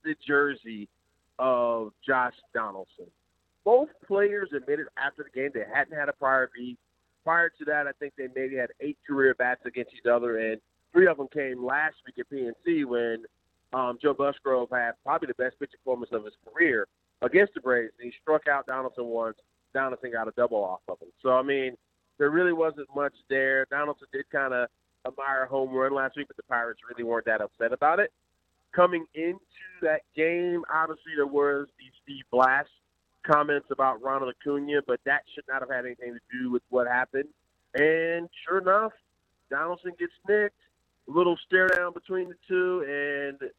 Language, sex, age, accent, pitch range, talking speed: English, male, 40-59, American, 125-145 Hz, 185 wpm